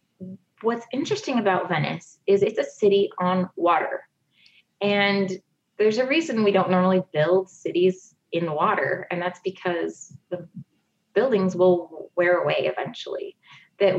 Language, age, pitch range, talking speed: English, 20-39, 180-215 Hz, 135 wpm